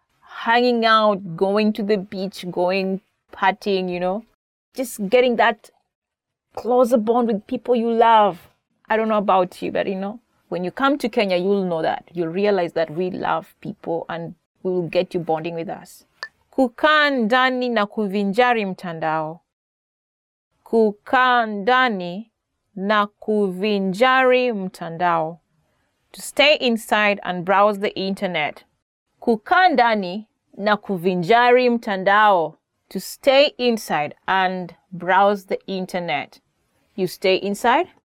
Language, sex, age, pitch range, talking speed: English, female, 30-49, 185-245 Hz, 120 wpm